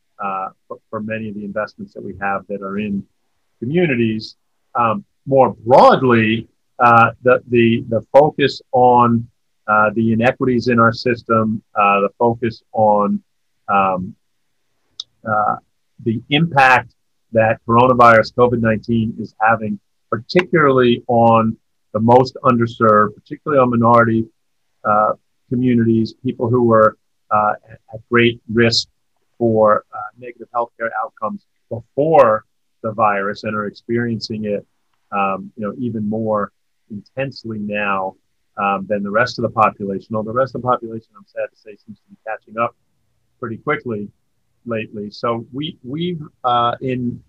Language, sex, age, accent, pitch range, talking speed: English, male, 40-59, American, 110-125 Hz, 140 wpm